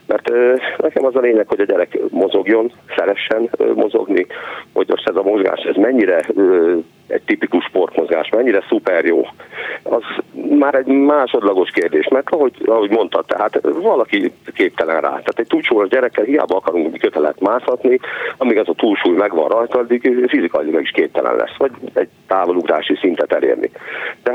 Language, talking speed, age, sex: Hungarian, 155 wpm, 50-69, male